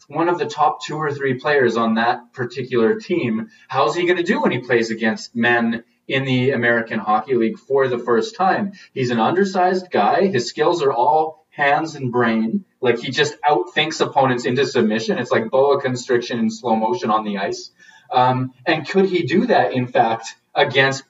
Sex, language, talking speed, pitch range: male, English, 195 wpm, 120-175 Hz